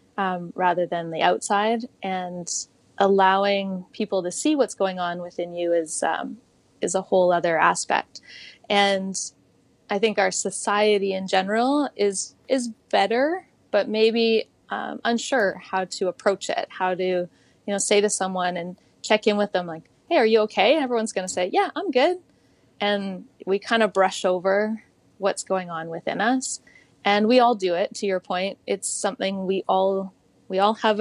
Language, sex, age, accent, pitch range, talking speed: English, female, 20-39, American, 180-215 Hz, 175 wpm